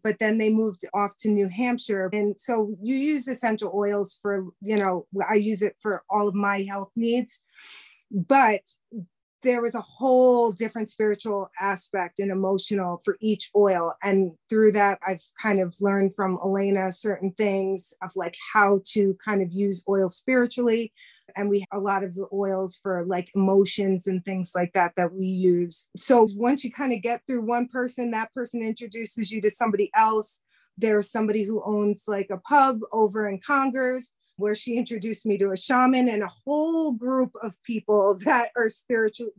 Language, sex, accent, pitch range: English, female, American, 195-235 Hz